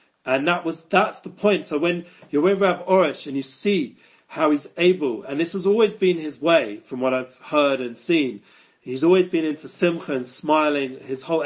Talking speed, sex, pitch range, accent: 210 wpm, male, 140-180 Hz, British